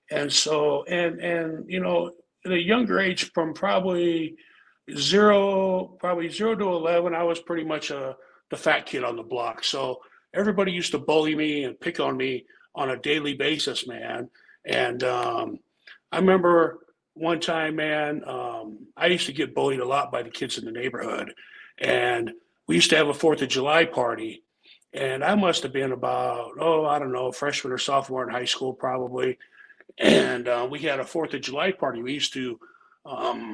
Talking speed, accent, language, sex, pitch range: 185 wpm, American, English, male, 130-170 Hz